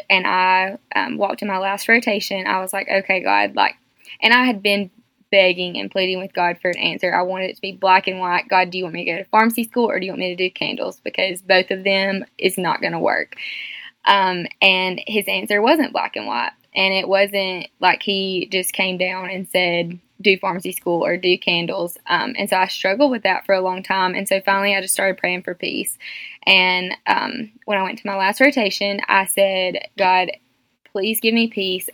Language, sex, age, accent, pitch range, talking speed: English, female, 10-29, American, 185-210 Hz, 225 wpm